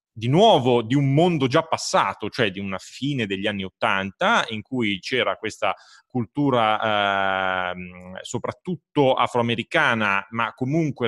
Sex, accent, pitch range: male, native, 110-145 Hz